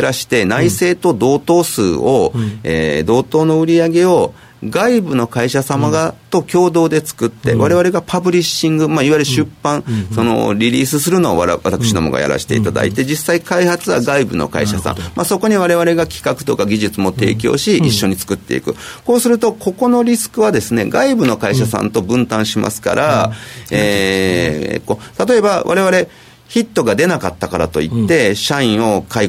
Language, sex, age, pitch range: Japanese, male, 40-59, 110-180 Hz